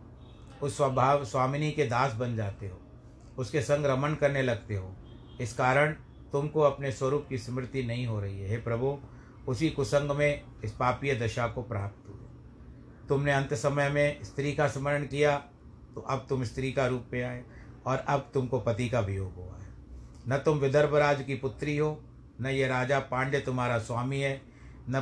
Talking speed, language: 180 wpm, Hindi